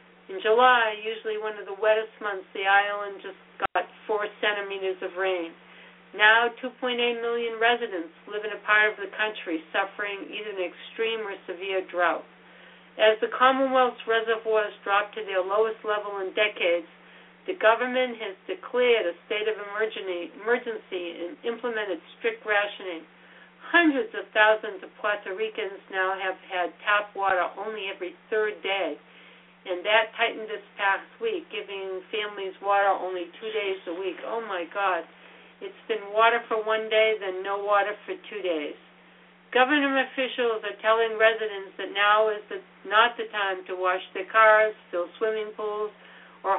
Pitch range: 190-225 Hz